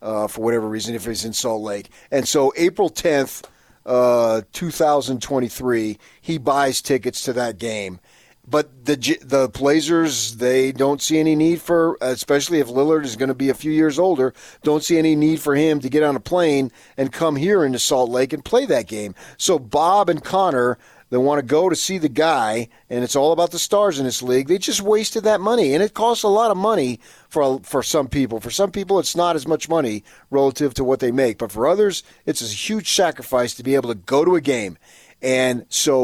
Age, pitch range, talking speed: 40-59, 115-160 Hz, 215 wpm